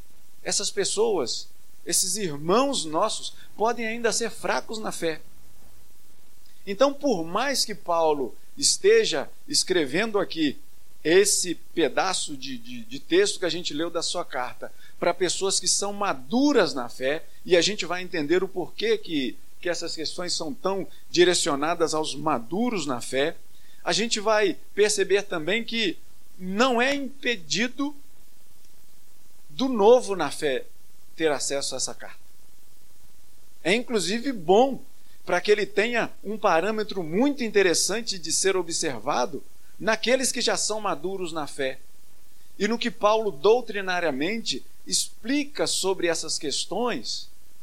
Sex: male